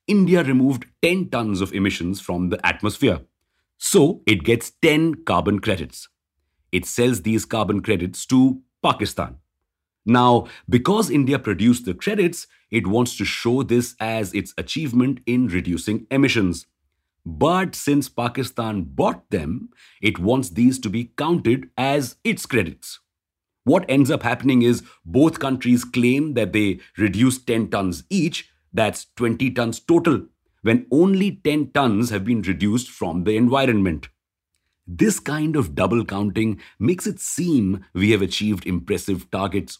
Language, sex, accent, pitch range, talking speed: English, male, Indian, 95-135 Hz, 140 wpm